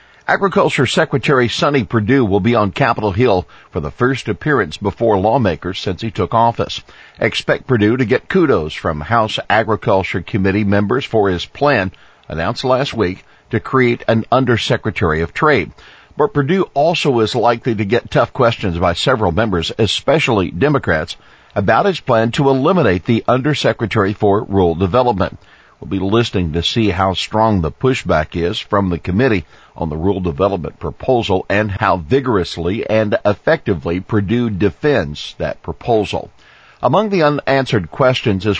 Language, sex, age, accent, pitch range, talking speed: English, male, 50-69, American, 95-120 Hz, 150 wpm